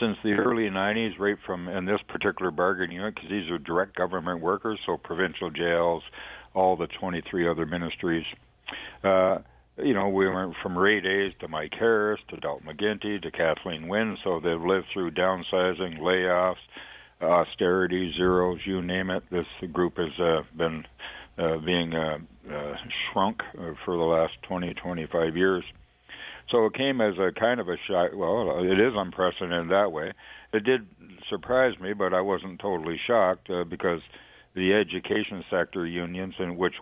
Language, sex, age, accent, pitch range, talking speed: English, male, 60-79, American, 85-95 Hz, 165 wpm